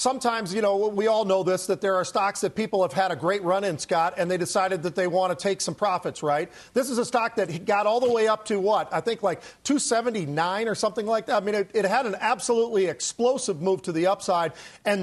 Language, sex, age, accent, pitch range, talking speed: English, male, 40-59, American, 185-230 Hz, 250 wpm